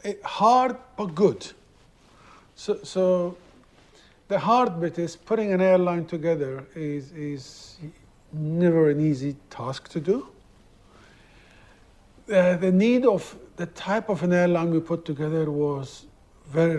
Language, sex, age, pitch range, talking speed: English, male, 50-69, 155-195 Hz, 130 wpm